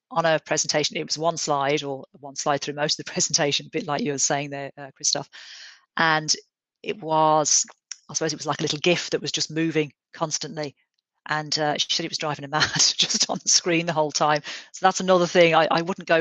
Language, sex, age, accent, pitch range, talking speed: English, female, 40-59, British, 145-165 Hz, 235 wpm